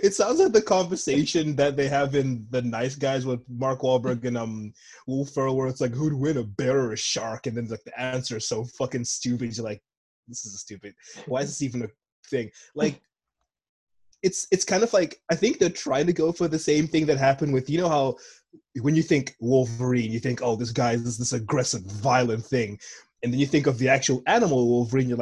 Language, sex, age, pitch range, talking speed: English, male, 20-39, 120-155 Hz, 230 wpm